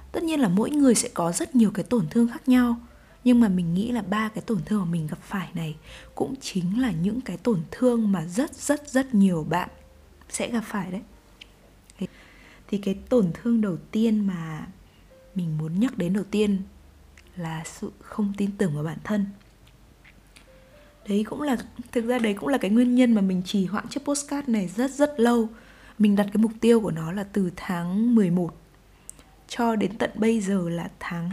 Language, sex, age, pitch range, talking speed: Vietnamese, female, 20-39, 180-235 Hz, 200 wpm